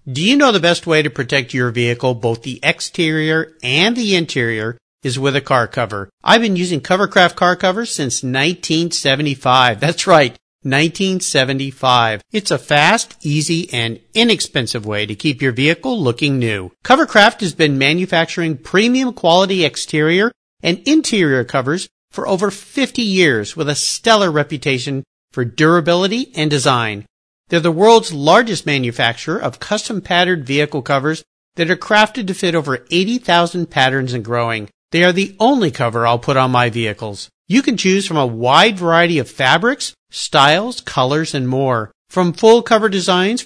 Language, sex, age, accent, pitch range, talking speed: English, male, 50-69, American, 135-205 Hz, 155 wpm